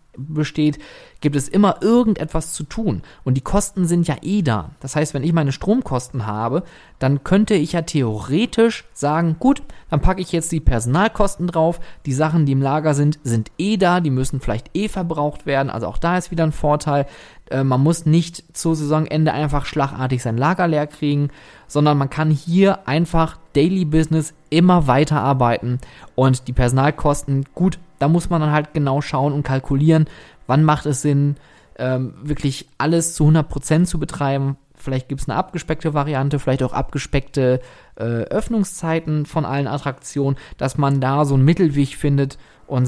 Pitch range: 135-165 Hz